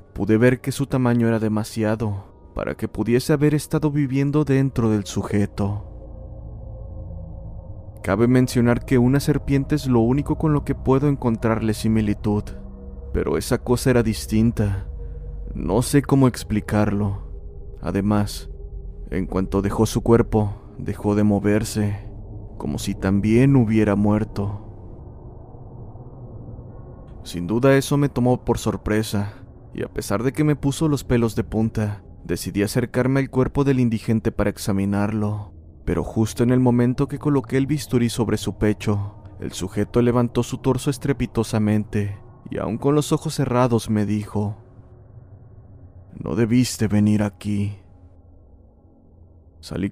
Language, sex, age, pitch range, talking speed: Spanish, male, 30-49, 100-125 Hz, 130 wpm